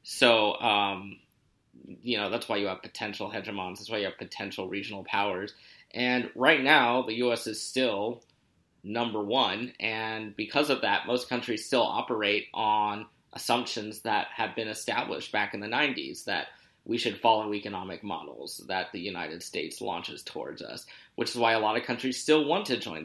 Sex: male